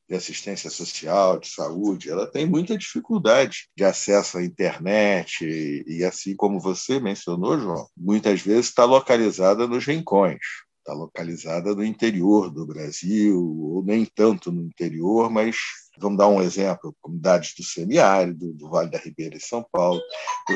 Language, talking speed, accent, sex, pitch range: Portuguese, 155 wpm, Brazilian, male, 90-120 Hz